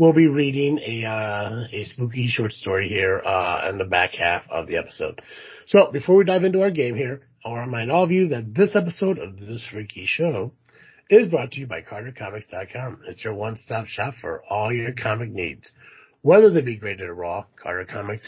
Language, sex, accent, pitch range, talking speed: English, male, American, 120-180 Hz, 205 wpm